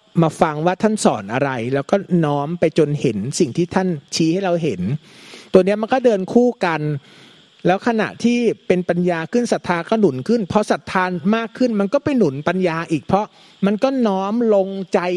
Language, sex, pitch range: Thai, male, 155-200 Hz